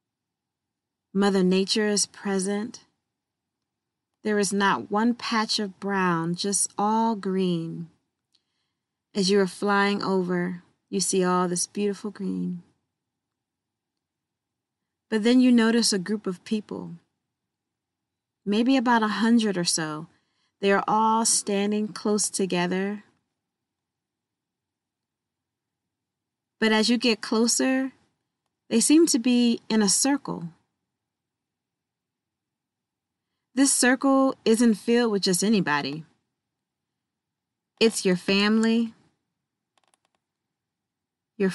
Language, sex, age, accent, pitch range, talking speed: English, female, 20-39, American, 185-230 Hz, 100 wpm